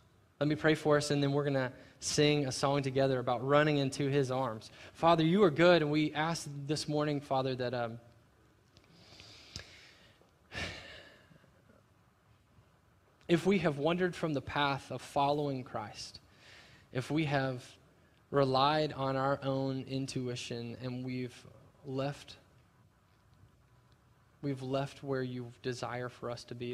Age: 20-39